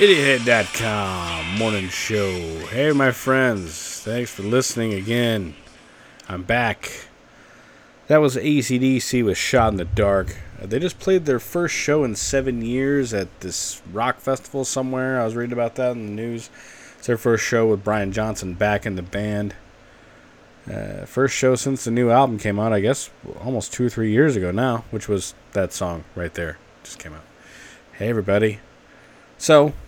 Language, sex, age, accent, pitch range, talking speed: English, male, 20-39, American, 95-130 Hz, 165 wpm